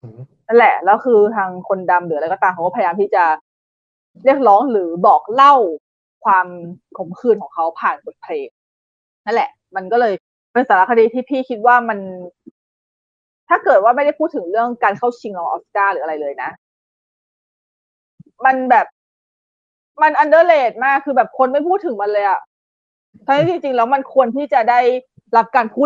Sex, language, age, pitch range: female, Thai, 20-39, 195-260 Hz